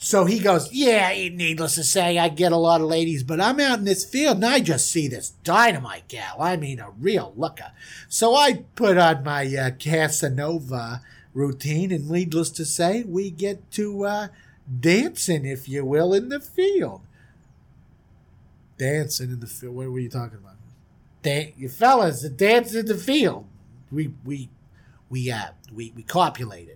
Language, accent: English, American